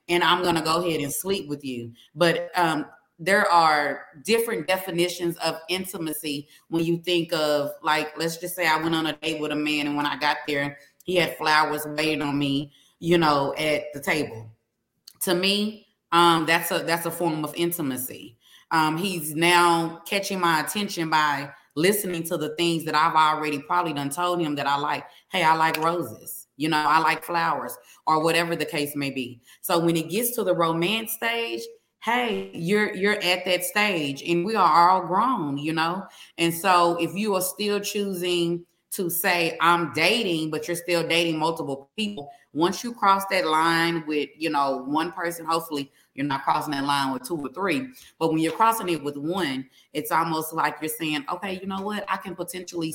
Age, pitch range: 20-39, 150-180 Hz